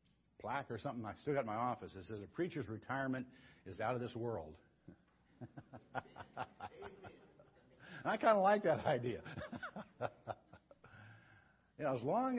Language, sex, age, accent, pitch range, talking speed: English, male, 60-79, American, 120-200 Hz, 135 wpm